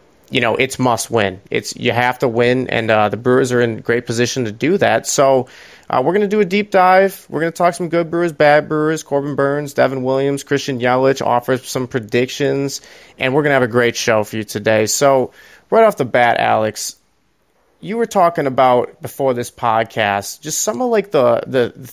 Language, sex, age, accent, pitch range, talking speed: English, male, 30-49, American, 115-140 Hz, 215 wpm